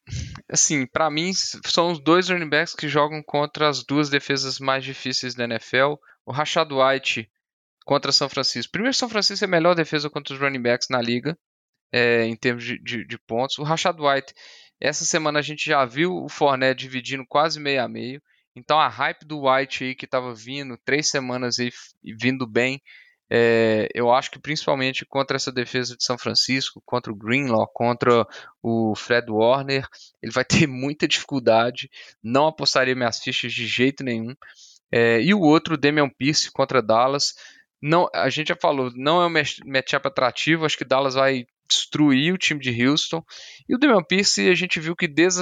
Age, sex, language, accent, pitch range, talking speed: 10-29, male, Portuguese, Brazilian, 125-155 Hz, 185 wpm